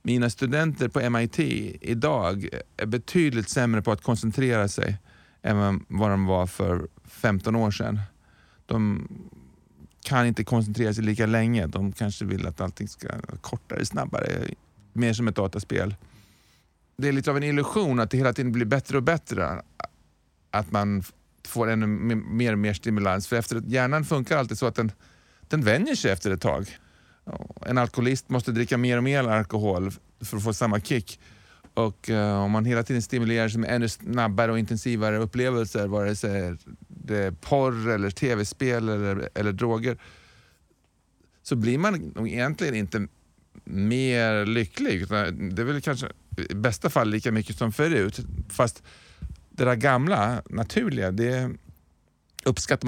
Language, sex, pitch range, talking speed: Swedish, male, 100-120 Hz, 160 wpm